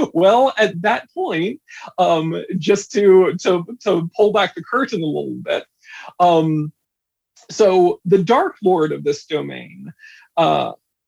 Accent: American